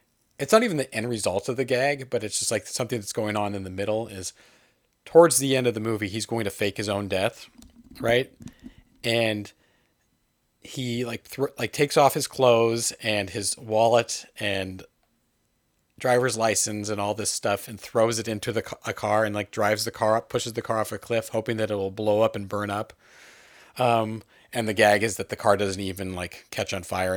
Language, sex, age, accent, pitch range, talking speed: English, male, 30-49, American, 100-120 Hz, 215 wpm